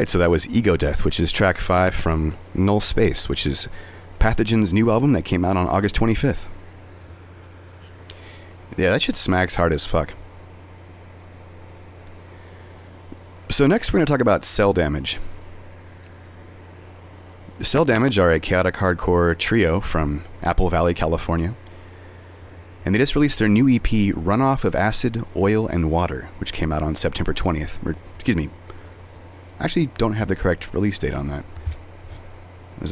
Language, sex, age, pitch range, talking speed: English, male, 30-49, 90-100 Hz, 150 wpm